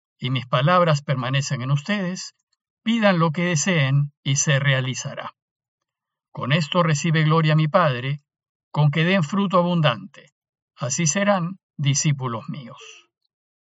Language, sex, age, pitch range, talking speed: Spanish, male, 50-69, 140-185 Hz, 125 wpm